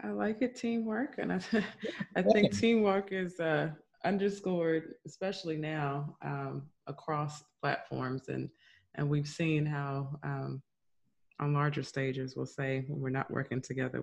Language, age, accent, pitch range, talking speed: English, 20-39, American, 135-170 Hz, 140 wpm